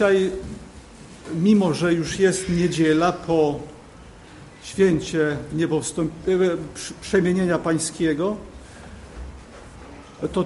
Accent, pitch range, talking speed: native, 160-190 Hz, 65 wpm